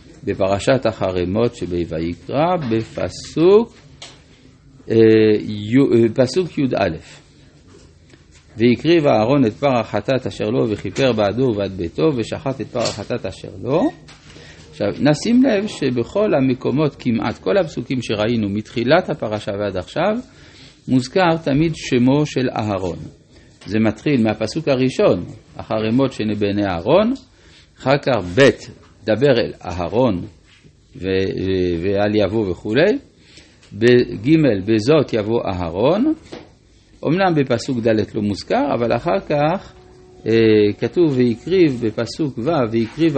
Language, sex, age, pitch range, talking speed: Hebrew, male, 50-69, 105-140 Hz, 105 wpm